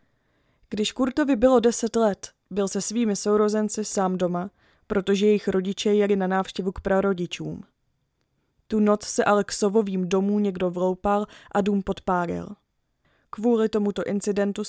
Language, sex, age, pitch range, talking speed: Czech, female, 20-39, 195-230 Hz, 140 wpm